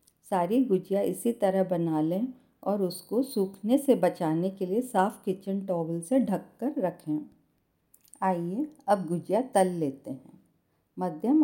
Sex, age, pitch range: female, 50-69, 175-215 Hz